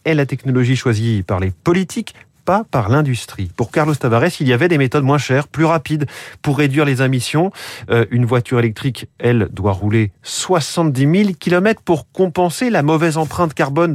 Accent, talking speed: French, 180 wpm